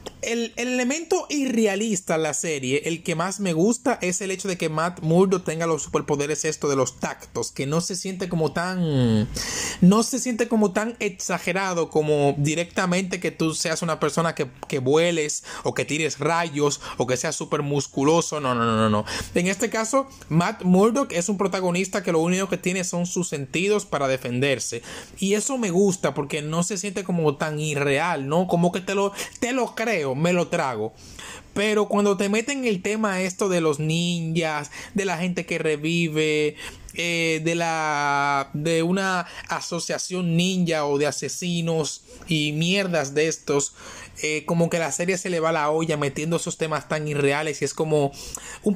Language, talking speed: Spanish, 185 wpm